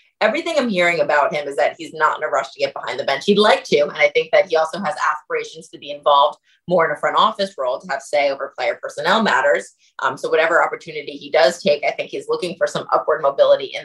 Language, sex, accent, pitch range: English, female, American, 155-210 Hz